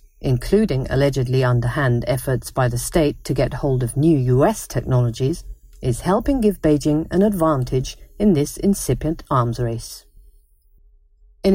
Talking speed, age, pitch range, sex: 135 wpm, 50-69, 125-185 Hz, female